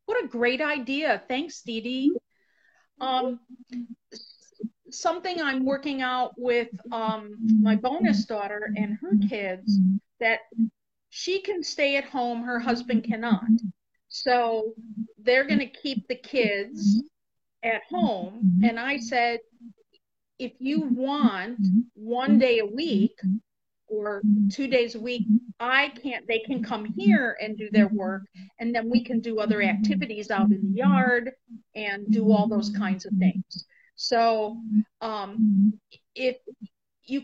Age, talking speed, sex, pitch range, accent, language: 50-69, 135 wpm, female, 215-260 Hz, American, English